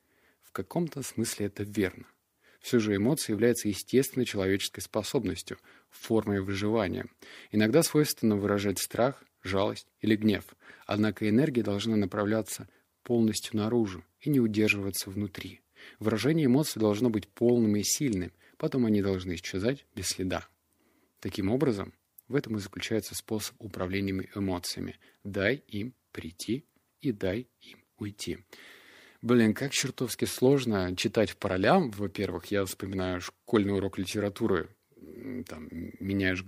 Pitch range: 95-115 Hz